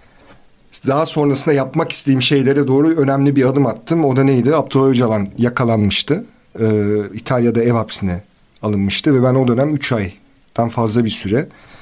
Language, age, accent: Turkish, 40-59, native